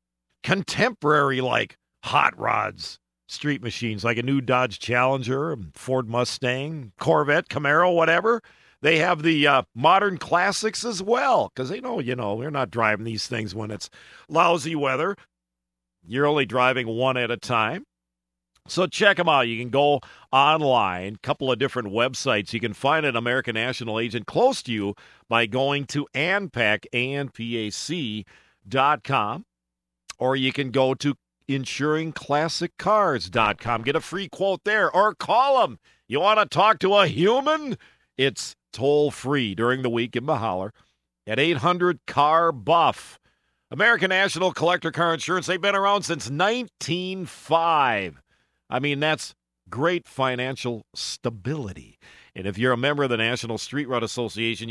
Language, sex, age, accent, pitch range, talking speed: English, male, 50-69, American, 115-165 Hz, 145 wpm